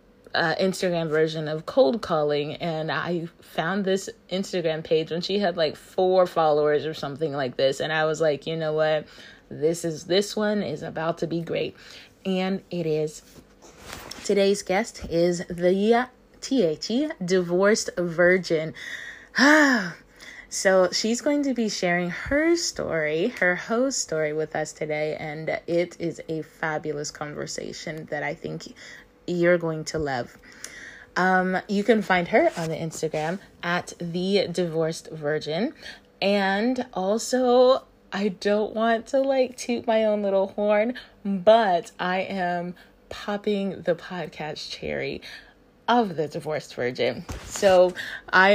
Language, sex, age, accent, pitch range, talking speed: English, female, 20-39, American, 160-210 Hz, 140 wpm